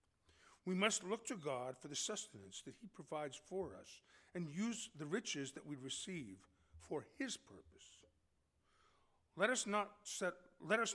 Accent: American